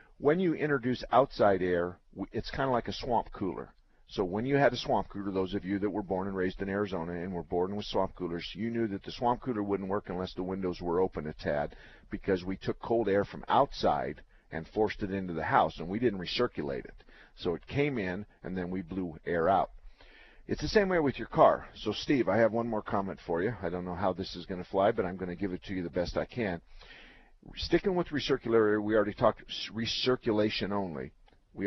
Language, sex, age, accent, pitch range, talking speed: English, male, 50-69, American, 95-115 Hz, 235 wpm